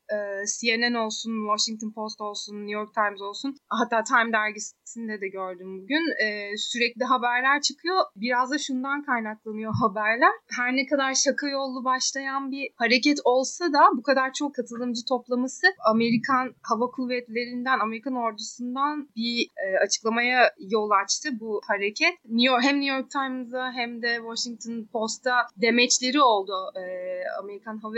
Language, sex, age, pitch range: Turkish, female, 30-49, 215-265 Hz